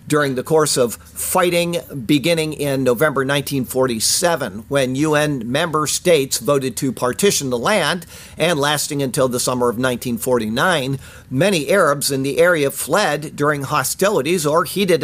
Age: 50-69